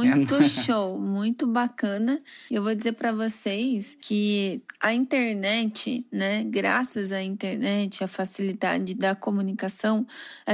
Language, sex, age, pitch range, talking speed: Portuguese, female, 20-39, 205-250 Hz, 120 wpm